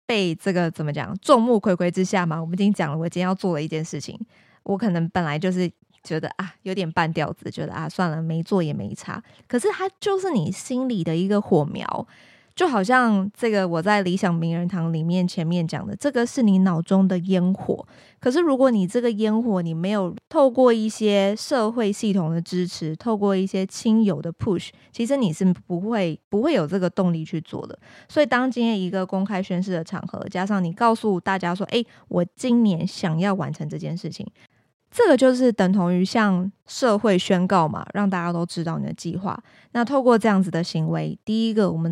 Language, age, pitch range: Chinese, 20-39, 170-215 Hz